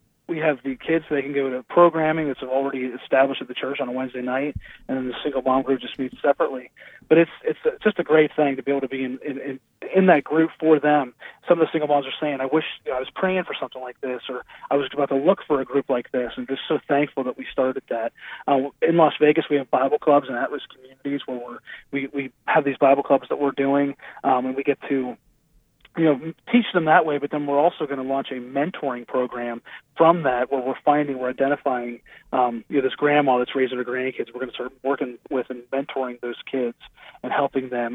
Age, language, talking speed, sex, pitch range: 30-49, English, 255 wpm, male, 130-155 Hz